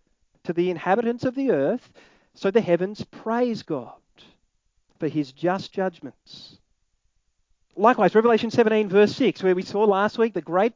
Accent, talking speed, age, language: Australian, 150 wpm, 40-59, English